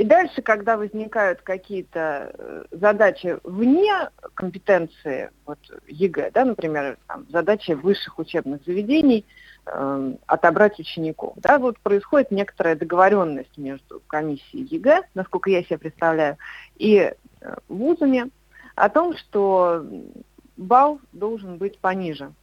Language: Russian